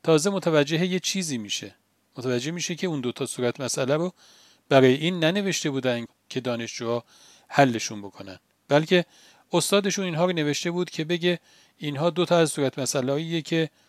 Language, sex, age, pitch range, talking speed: Persian, male, 40-59, 130-170 Hz, 160 wpm